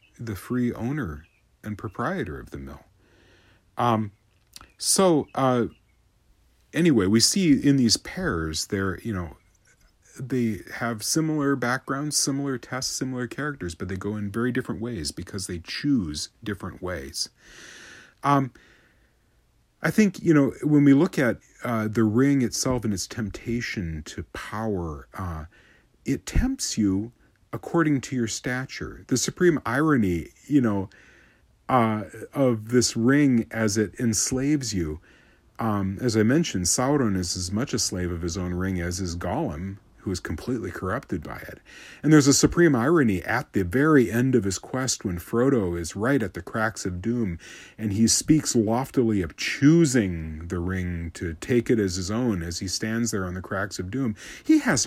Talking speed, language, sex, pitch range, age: 160 wpm, English, male, 95-130 Hz, 40-59